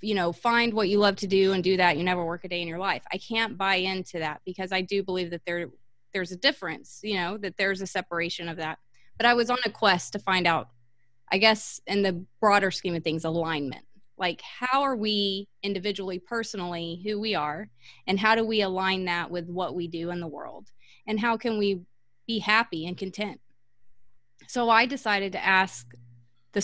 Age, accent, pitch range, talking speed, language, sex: 20-39, American, 175-210 Hz, 215 wpm, English, female